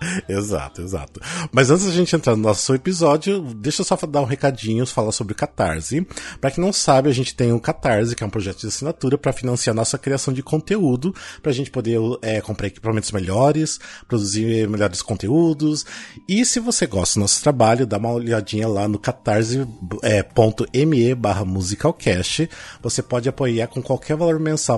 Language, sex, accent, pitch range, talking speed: Portuguese, male, Brazilian, 110-150 Hz, 170 wpm